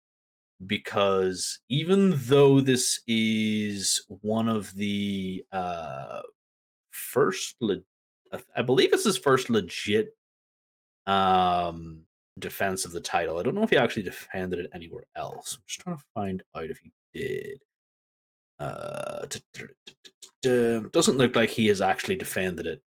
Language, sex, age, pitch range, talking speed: English, male, 30-49, 90-120 Hz, 130 wpm